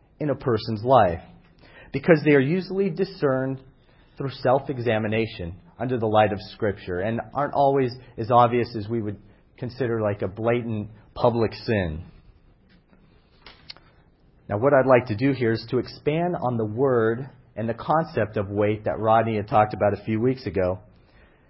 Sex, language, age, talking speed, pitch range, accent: male, English, 40-59, 160 wpm, 105-140 Hz, American